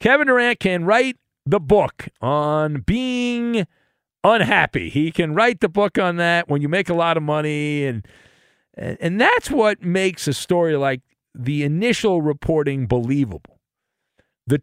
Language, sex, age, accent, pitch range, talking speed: English, male, 50-69, American, 140-185 Hz, 150 wpm